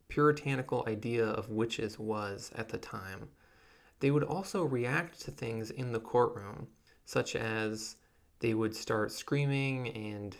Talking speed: 140 wpm